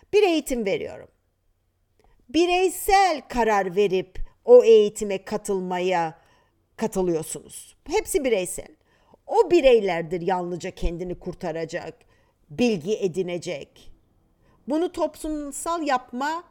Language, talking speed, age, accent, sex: Turkish, 80 wpm, 50-69, native, female